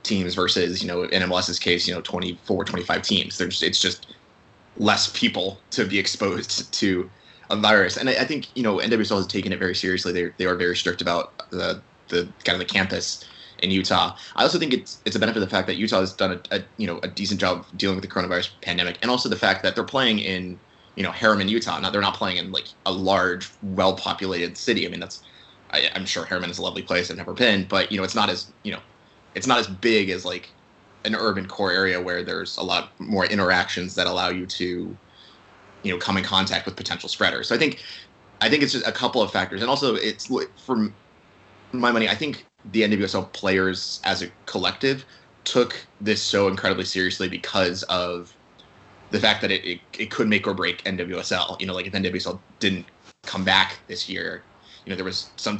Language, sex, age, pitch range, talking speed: English, male, 20-39, 90-100 Hz, 220 wpm